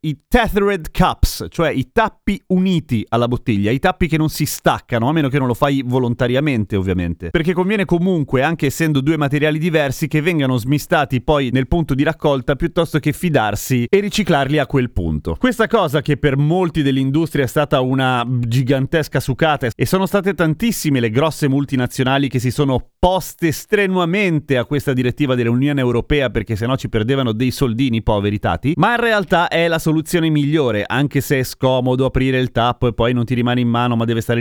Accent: native